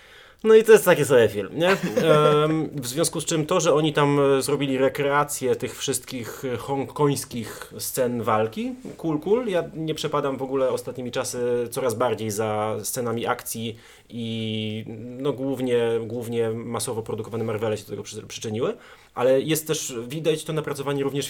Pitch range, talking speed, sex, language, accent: 115-145 Hz, 165 wpm, male, Polish, native